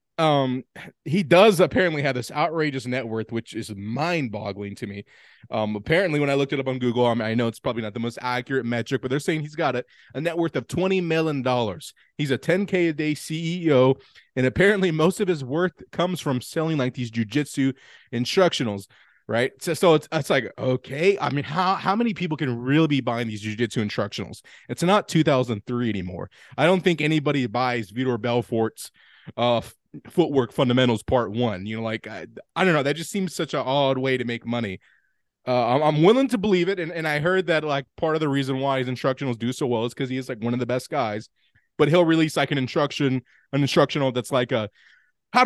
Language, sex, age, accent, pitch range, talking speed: English, male, 20-39, American, 120-160 Hz, 220 wpm